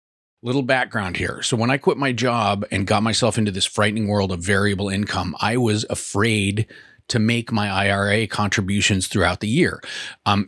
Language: English